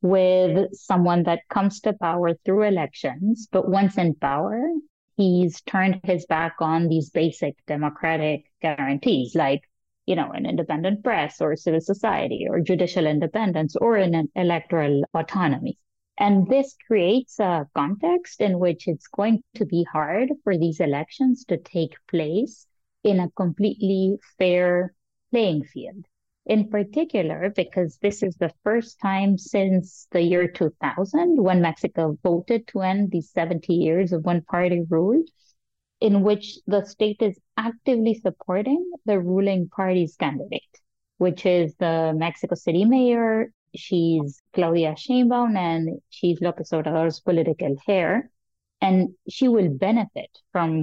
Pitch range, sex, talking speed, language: 165-205 Hz, female, 135 wpm, English